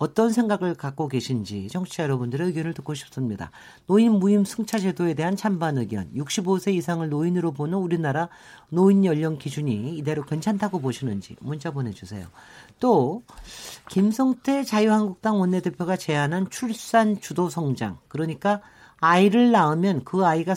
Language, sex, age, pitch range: Korean, male, 40-59, 140-200 Hz